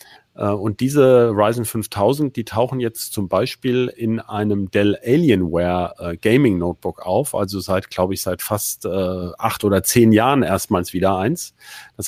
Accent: German